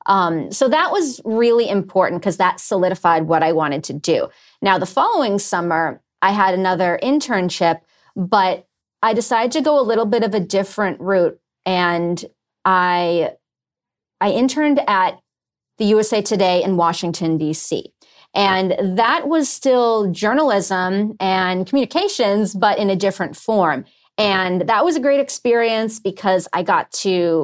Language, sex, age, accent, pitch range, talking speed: English, female, 30-49, American, 175-215 Hz, 145 wpm